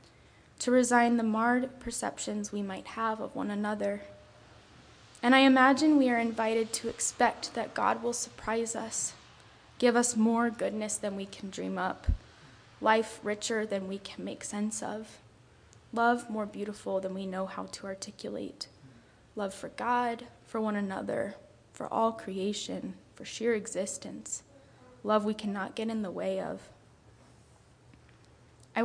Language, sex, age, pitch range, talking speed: English, female, 10-29, 190-230 Hz, 150 wpm